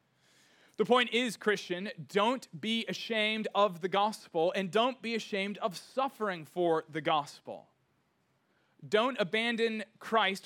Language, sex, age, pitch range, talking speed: English, male, 30-49, 140-210 Hz, 125 wpm